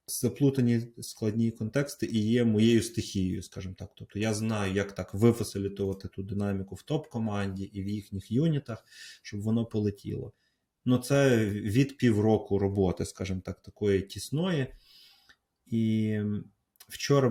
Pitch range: 110-145 Hz